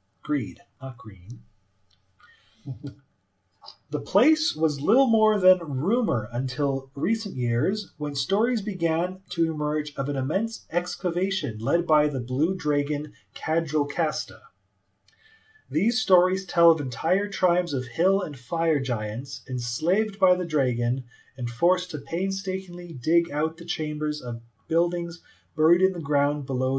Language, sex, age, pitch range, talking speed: English, male, 30-49, 125-175 Hz, 130 wpm